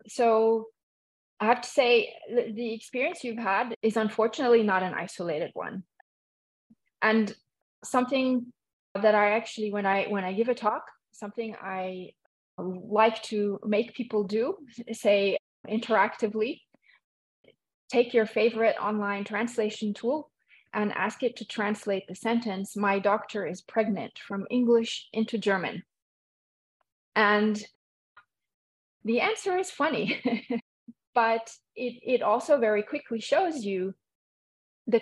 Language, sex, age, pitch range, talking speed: English, female, 30-49, 200-235 Hz, 120 wpm